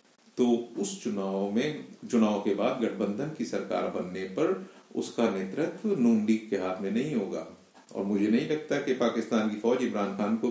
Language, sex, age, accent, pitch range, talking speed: Hindi, male, 50-69, native, 105-130 Hz, 175 wpm